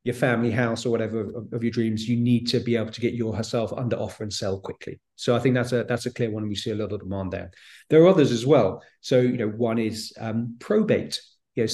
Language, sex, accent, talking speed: English, male, British, 265 wpm